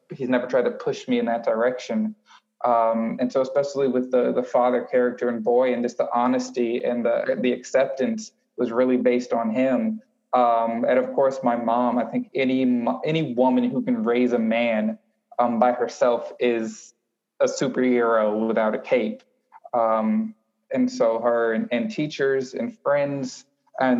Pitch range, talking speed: 115-135 Hz, 170 wpm